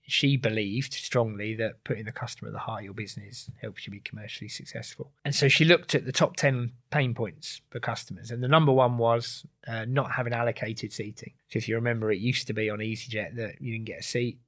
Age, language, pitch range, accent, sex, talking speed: 20-39, English, 110-130 Hz, British, male, 230 wpm